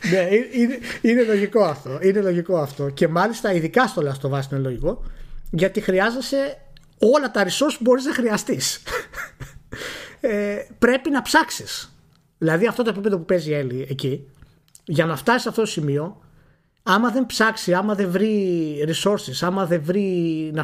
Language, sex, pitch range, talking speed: Greek, male, 145-210 Hz, 160 wpm